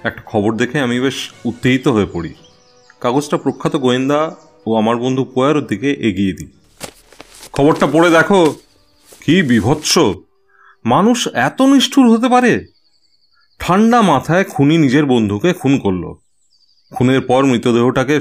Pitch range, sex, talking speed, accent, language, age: 115-175 Hz, male, 125 wpm, native, Bengali, 30-49